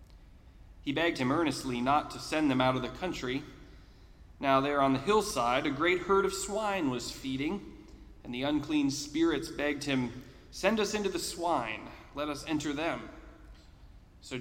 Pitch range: 120-185 Hz